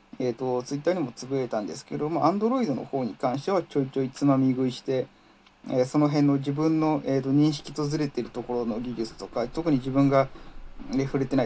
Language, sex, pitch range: Japanese, male, 130-190 Hz